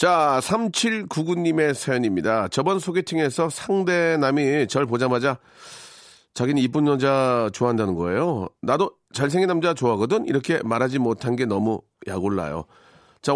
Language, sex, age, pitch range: Korean, male, 40-59, 110-150 Hz